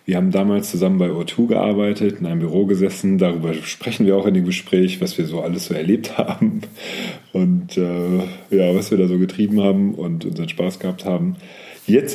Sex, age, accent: male, 40-59, German